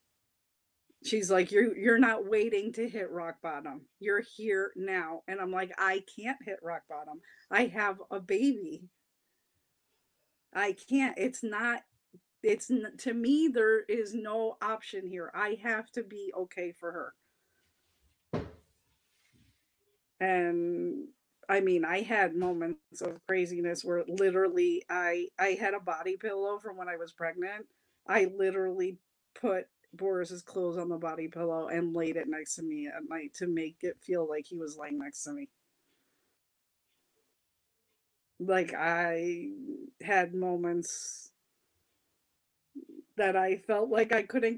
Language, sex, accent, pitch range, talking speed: English, female, American, 180-235 Hz, 140 wpm